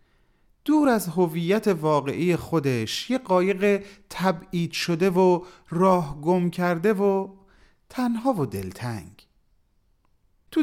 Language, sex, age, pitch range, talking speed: Persian, male, 40-59, 145-210 Hz, 100 wpm